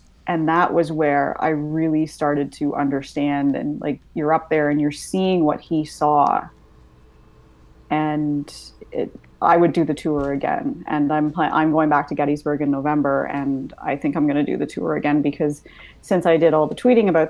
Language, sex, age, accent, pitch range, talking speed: English, female, 30-49, American, 145-165 Hz, 190 wpm